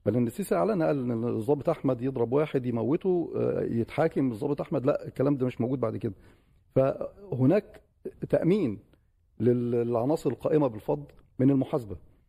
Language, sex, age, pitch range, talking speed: Arabic, male, 40-59, 120-155 Hz, 130 wpm